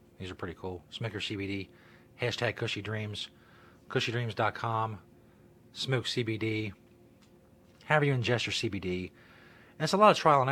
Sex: male